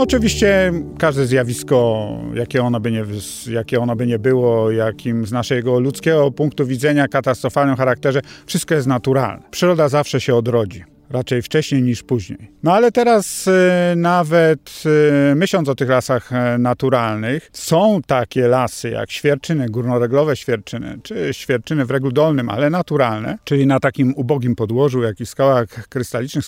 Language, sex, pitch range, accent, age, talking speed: English, male, 120-155 Hz, Polish, 50-69, 140 wpm